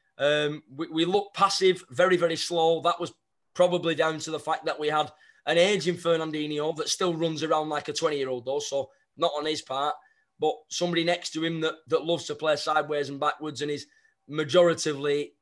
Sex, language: male, English